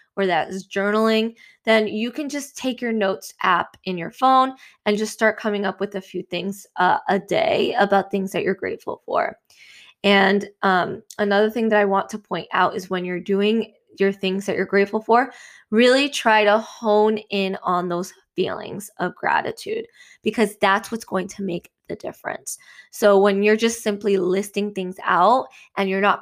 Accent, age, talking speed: American, 20-39, 190 wpm